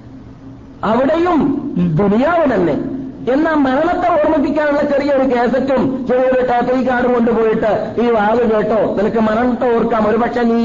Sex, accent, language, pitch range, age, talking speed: male, native, Malayalam, 175-245 Hz, 50-69, 120 wpm